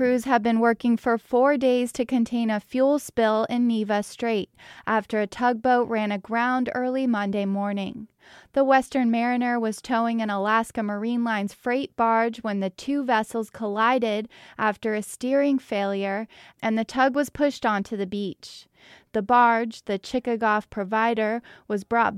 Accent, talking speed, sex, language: American, 155 wpm, female, English